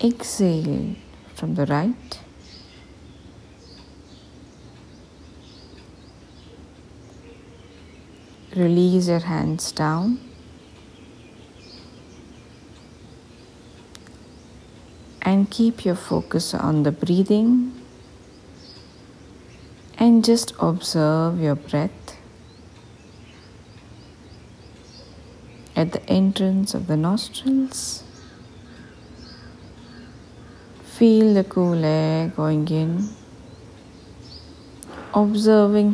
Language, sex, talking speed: English, female, 55 wpm